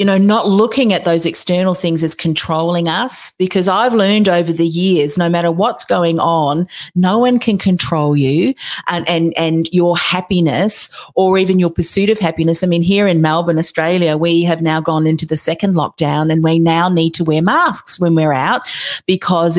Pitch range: 165-205 Hz